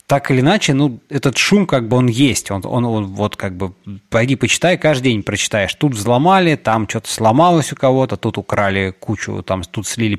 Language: Russian